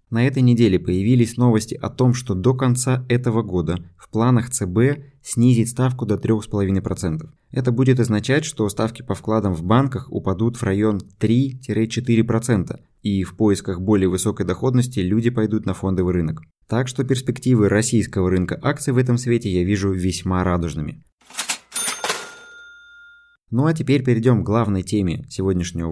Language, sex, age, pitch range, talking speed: Russian, male, 20-39, 100-125 Hz, 150 wpm